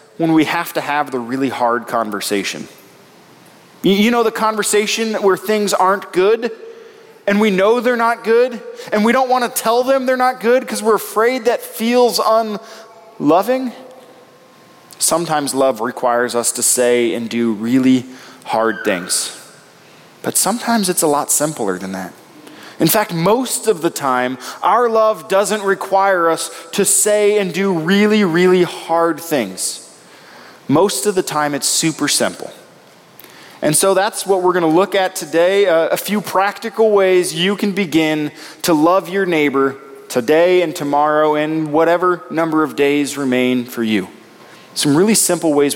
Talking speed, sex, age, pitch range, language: 155 wpm, male, 20-39, 150-215 Hz, English